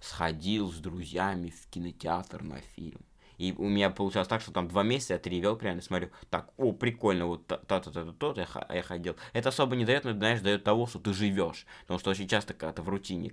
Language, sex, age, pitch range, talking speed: Russian, male, 20-39, 90-115 Hz, 240 wpm